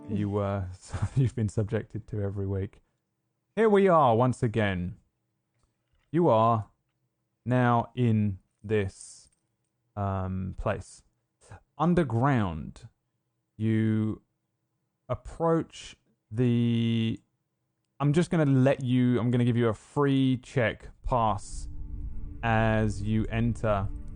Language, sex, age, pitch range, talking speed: English, male, 20-39, 95-115 Hz, 100 wpm